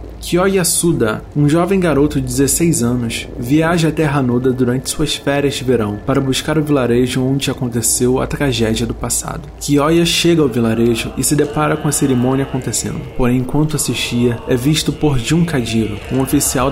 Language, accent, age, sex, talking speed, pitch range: Portuguese, Brazilian, 20-39, male, 170 wpm, 115-145 Hz